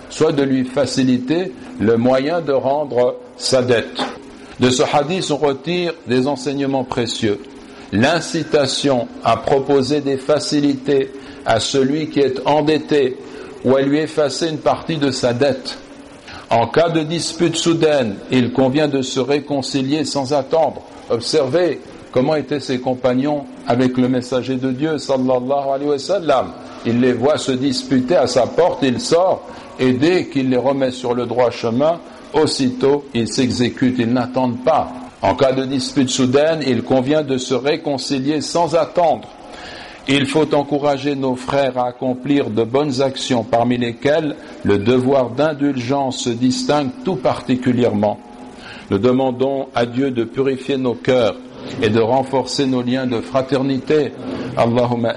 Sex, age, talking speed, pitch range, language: male, 60-79, 145 wpm, 125-145 Hz, French